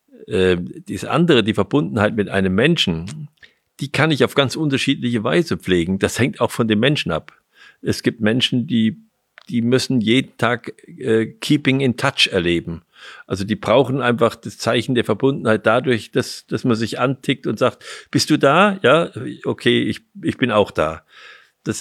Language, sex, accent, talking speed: German, male, German, 170 wpm